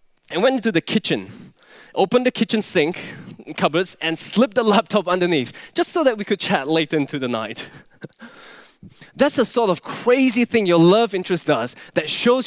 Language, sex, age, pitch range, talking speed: English, male, 20-39, 150-220 Hz, 180 wpm